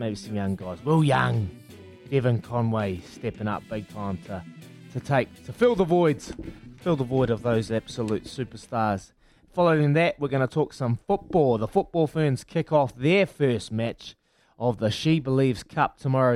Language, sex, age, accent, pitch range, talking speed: English, male, 20-39, Australian, 105-135 Hz, 175 wpm